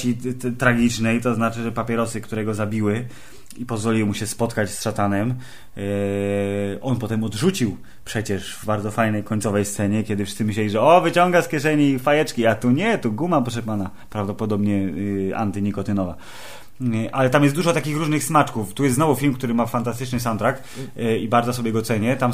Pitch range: 110-125 Hz